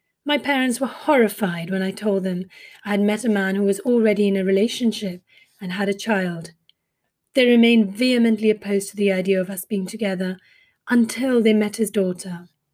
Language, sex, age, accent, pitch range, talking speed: English, female, 30-49, British, 195-230 Hz, 185 wpm